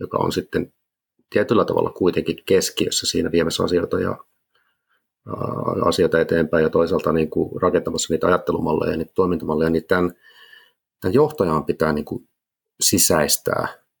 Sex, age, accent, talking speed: male, 30-49, native, 130 wpm